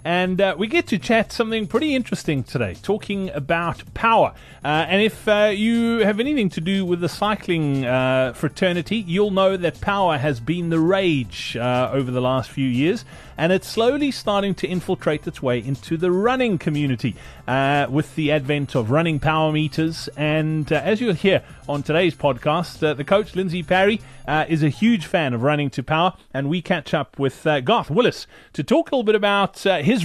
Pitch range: 150-200 Hz